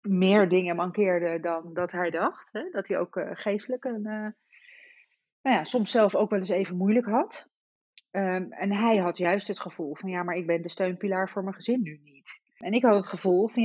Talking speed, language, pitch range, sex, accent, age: 200 wpm, Dutch, 185-235 Hz, female, Dutch, 40-59